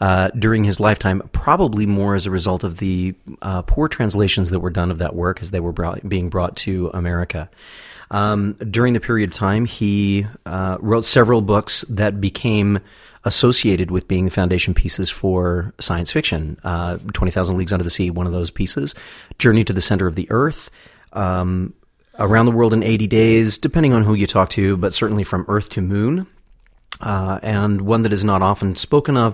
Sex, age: male, 30-49